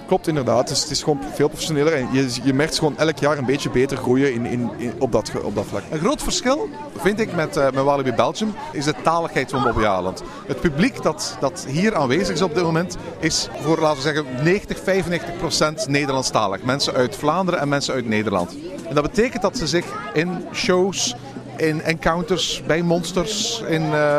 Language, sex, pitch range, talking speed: Dutch, male, 135-170 Hz, 195 wpm